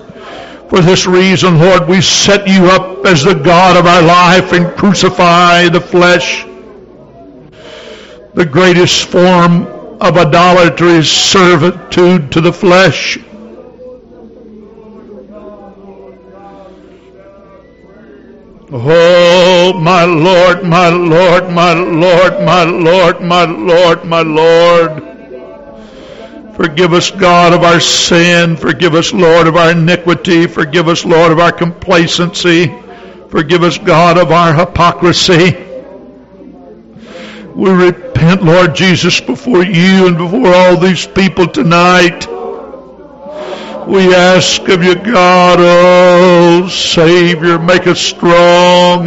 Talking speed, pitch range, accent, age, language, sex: 105 wpm, 170-185 Hz, American, 60-79, English, male